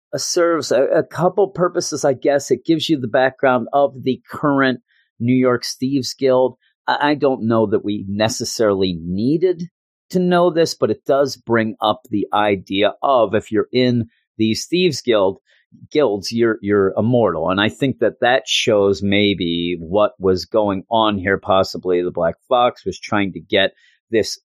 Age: 40-59